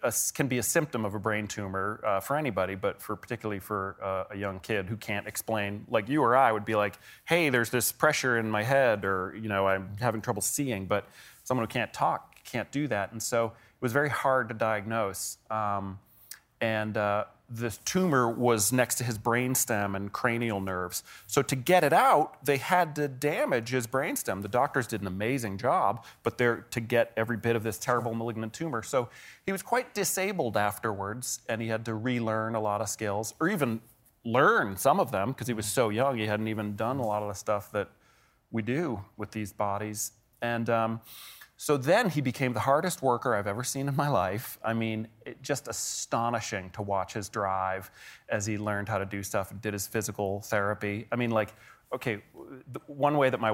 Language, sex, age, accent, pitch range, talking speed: English, male, 30-49, American, 105-130 Hz, 210 wpm